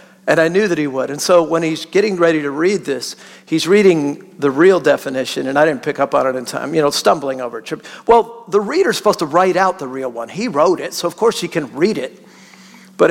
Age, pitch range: 50-69, 160-220 Hz